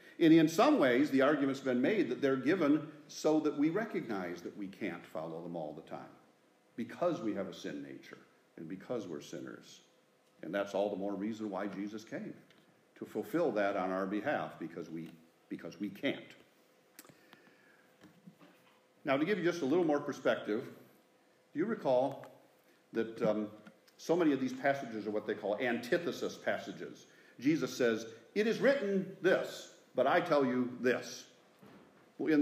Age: 50-69